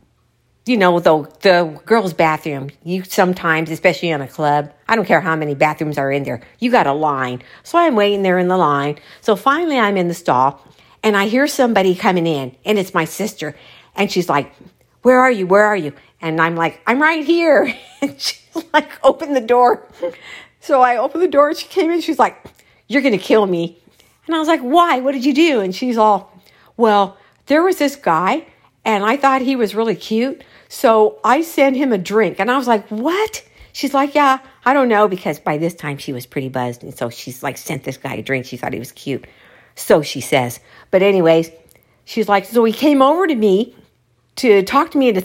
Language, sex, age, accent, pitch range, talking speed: English, female, 50-69, American, 170-280 Hz, 220 wpm